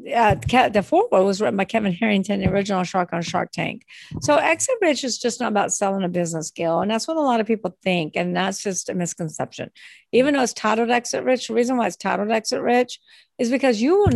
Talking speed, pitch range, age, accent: 235 wpm, 185-245 Hz, 50-69, American